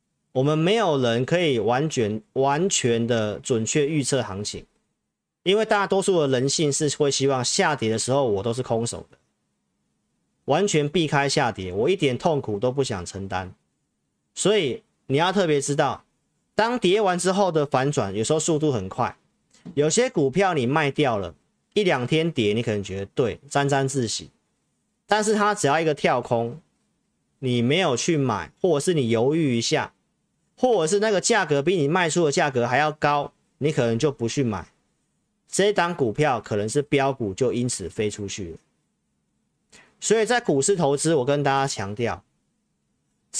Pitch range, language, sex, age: 115-160 Hz, Chinese, male, 40-59